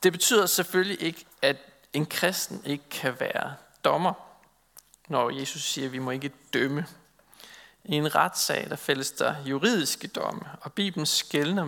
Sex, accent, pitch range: male, native, 140-205 Hz